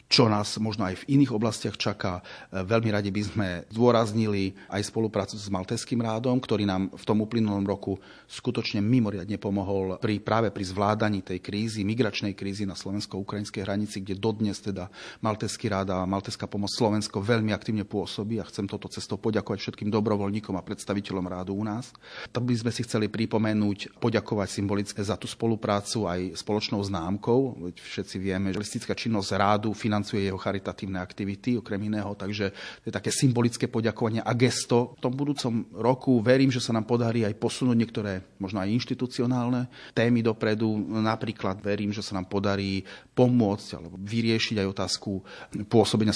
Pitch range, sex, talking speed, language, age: 95-115 Hz, male, 160 wpm, Slovak, 30-49